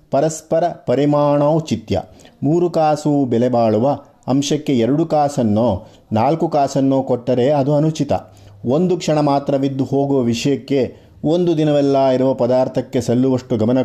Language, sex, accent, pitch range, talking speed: Kannada, male, native, 120-150 Hz, 110 wpm